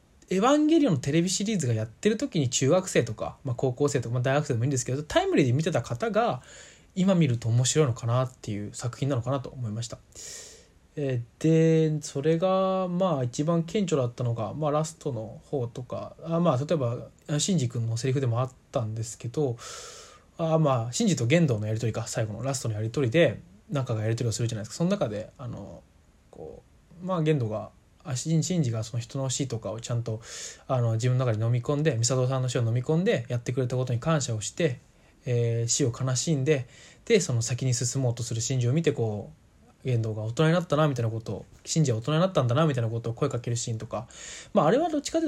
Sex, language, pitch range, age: male, Japanese, 115-160 Hz, 20-39